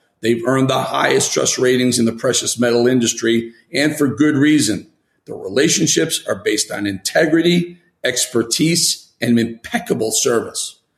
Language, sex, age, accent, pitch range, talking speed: English, male, 40-59, American, 120-175 Hz, 135 wpm